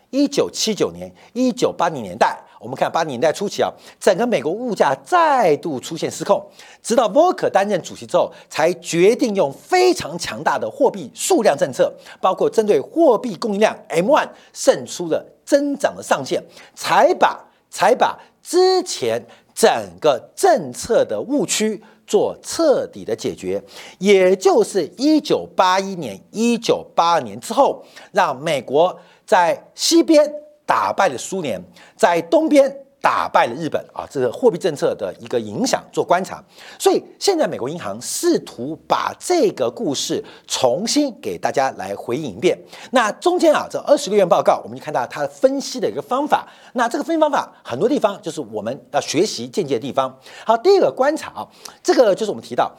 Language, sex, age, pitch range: Chinese, male, 50-69, 225-370 Hz